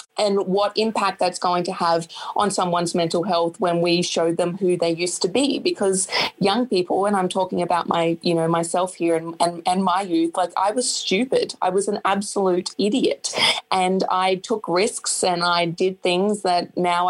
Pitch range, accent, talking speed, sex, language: 175-200 Hz, Australian, 195 wpm, female, English